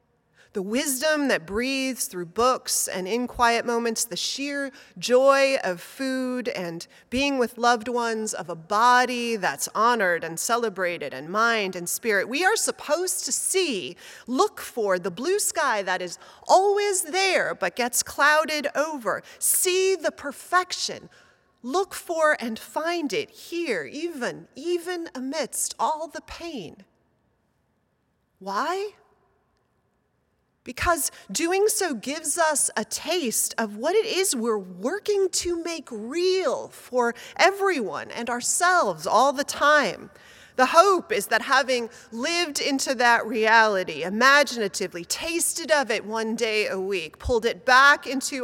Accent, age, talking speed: American, 30-49, 135 wpm